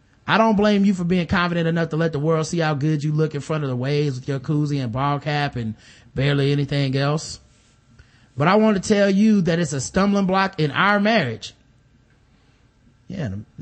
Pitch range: 135-175 Hz